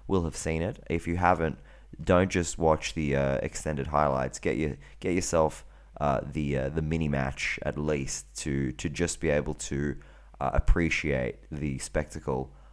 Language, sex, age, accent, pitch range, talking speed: English, male, 20-39, Australian, 70-85 Hz, 170 wpm